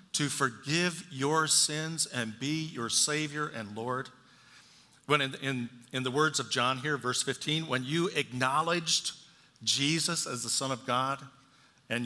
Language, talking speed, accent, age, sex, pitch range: English, 155 wpm, American, 50-69, male, 130-175 Hz